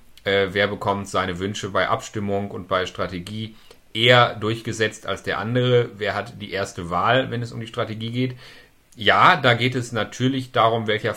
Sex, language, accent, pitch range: male, German, German, 105-130 Hz